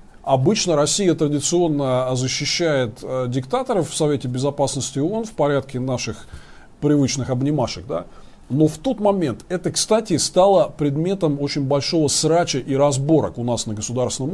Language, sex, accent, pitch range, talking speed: Russian, male, native, 130-165 Hz, 130 wpm